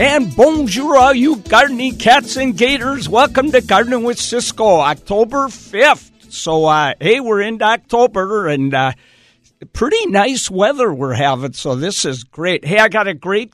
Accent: American